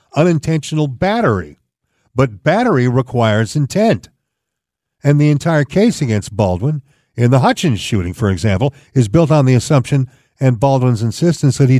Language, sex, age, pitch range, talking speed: English, male, 50-69, 115-150 Hz, 140 wpm